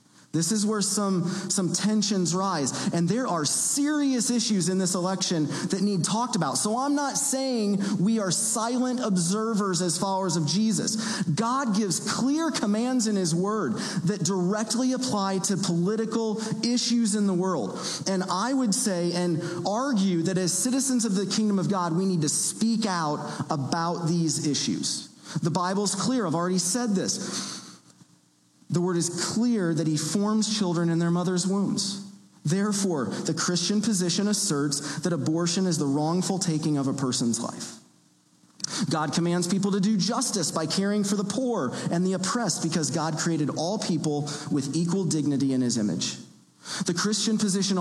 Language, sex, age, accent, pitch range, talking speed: English, male, 40-59, American, 165-210 Hz, 165 wpm